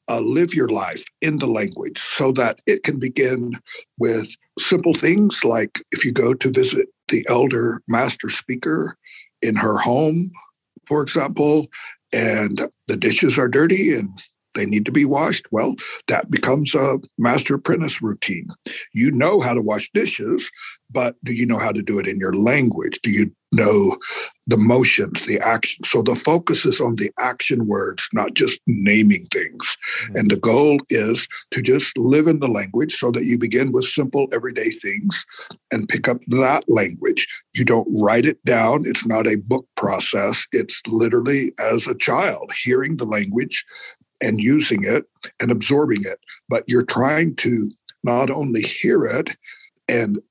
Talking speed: 165 wpm